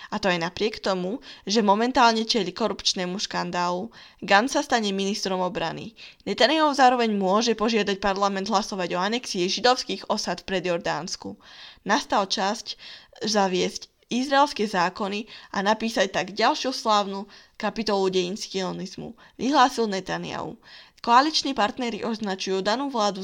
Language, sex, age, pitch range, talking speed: Slovak, female, 10-29, 190-235 Hz, 120 wpm